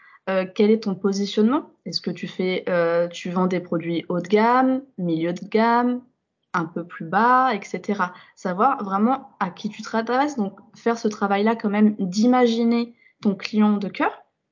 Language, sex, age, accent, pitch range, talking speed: French, female, 20-39, French, 195-245 Hz, 180 wpm